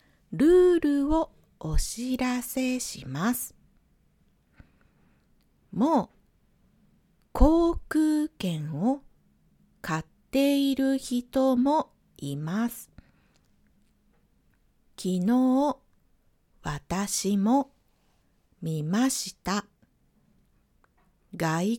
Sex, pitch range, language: female, 170-265 Hz, Japanese